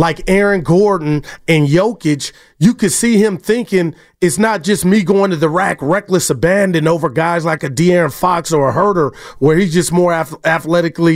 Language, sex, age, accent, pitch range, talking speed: English, male, 30-49, American, 165-210 Hz, 190 wpm